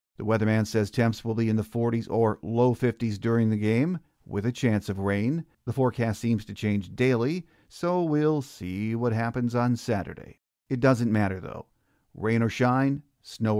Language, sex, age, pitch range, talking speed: English, male, 50-69, 105-125 Hz, 180 wpm